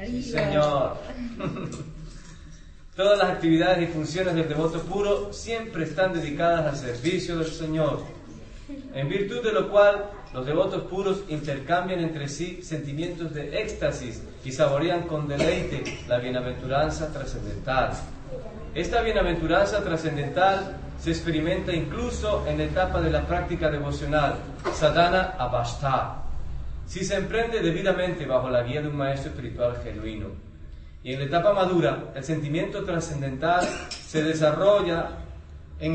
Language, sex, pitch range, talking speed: English, male, 140-175 Hz, 125 wpm